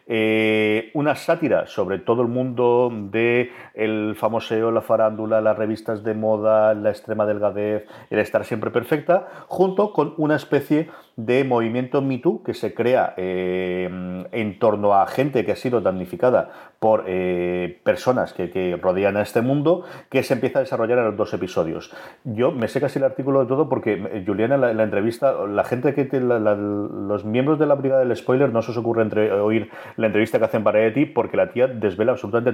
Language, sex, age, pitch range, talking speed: Spanish, male, 30-49, 105-130 Hz, 195 wpm